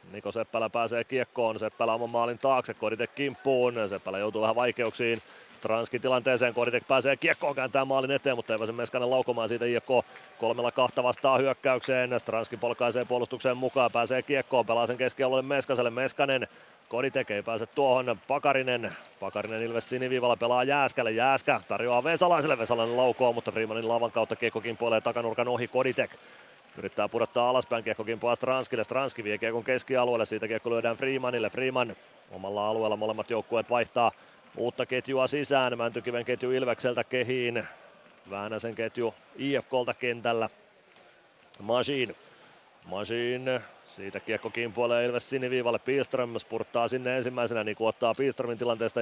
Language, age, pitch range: Finnish, 30-49, 115-130 Hz